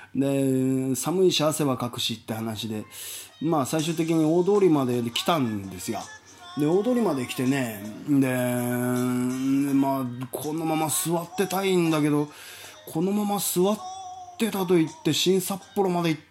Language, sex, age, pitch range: Japanese, male, 20-39, 125-160 Hz